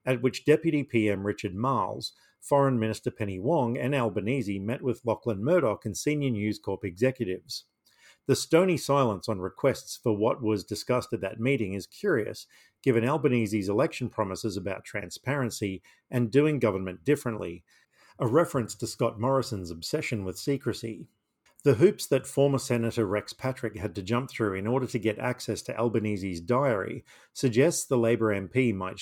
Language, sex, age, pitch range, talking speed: English, male, 50-69, 105-135 Hz, 160 wpm